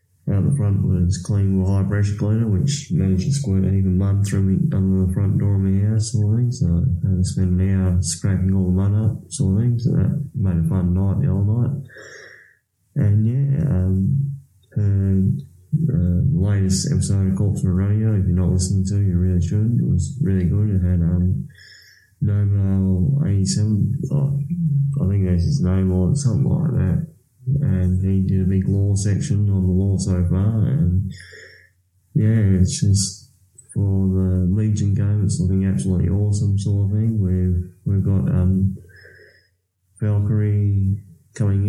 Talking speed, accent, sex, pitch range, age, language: 175 wpm, Australian, male, 95-110 Hz, 20-39, English